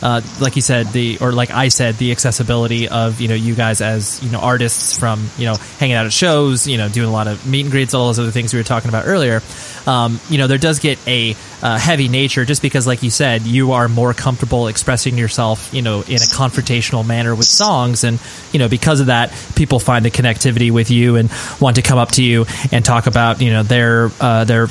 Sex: male